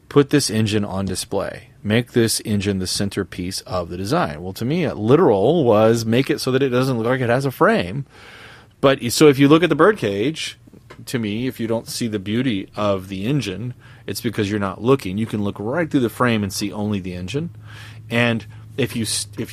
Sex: male